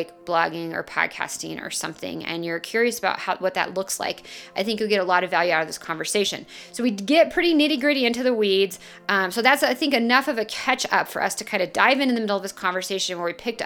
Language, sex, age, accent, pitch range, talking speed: English, female, 30-49, American, 180-230 Hz, 265 wpm